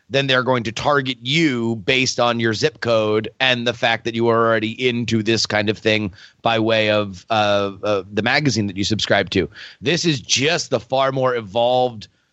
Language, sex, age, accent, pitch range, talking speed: English, male, 30-49, American, 110-140 Hz, 200 wpm